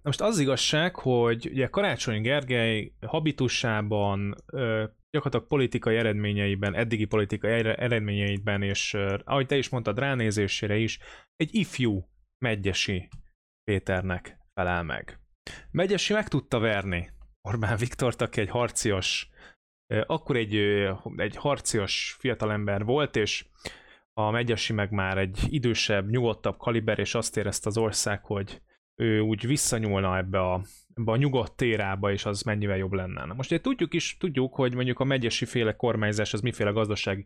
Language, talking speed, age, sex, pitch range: Hungarian, 140 wpm, 20-39, male, 100-125 Hz